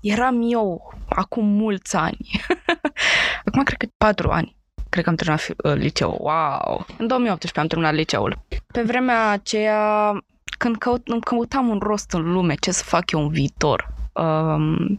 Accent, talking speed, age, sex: native, 150 wpm, 20-39, female